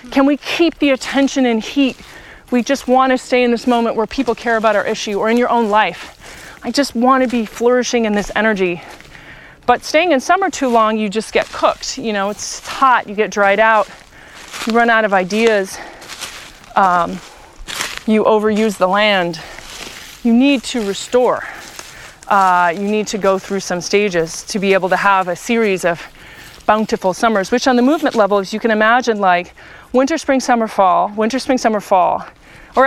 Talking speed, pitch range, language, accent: 190 wpm, 195-250 Hz, English, American